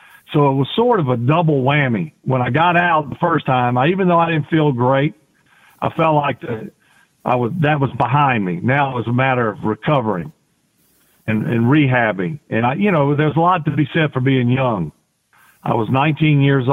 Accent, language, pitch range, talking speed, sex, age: American, English, 125-150 Hz, 210 wpm, male, 50-69